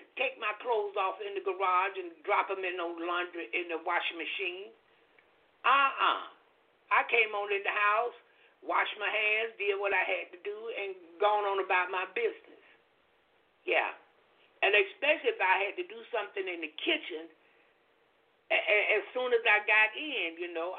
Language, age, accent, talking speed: English, 60-79, American, 175 wpm